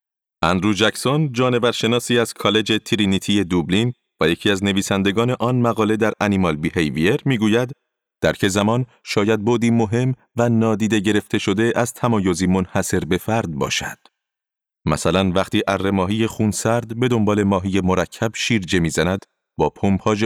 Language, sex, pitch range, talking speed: Persian, male, 100-120 Hz, 135 wpm